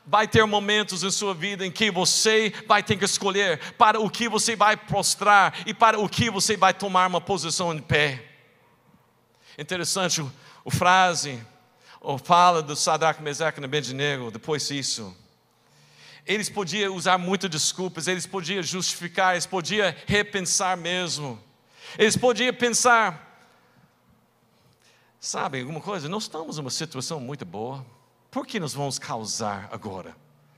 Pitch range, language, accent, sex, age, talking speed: 150-215 Hz, Portuguese, Brazilian, male, 50-69, 140 wpm